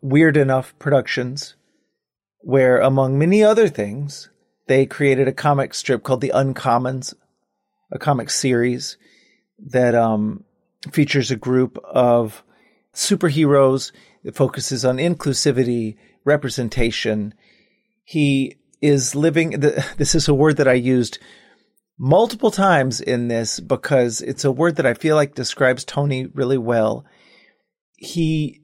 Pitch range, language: 125-165 Hz, English